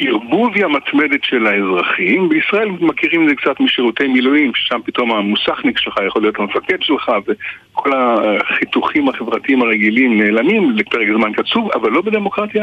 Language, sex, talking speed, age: Hebrew, male, 145 wpm, 60-79